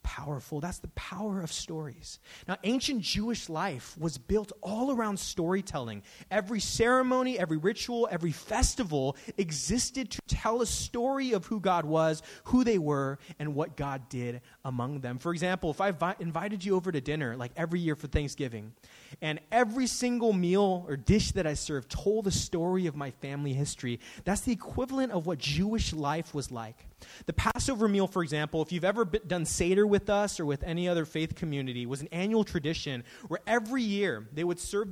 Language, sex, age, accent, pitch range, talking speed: English, male, 20-39, American, 140-205 Hz, 185 wpm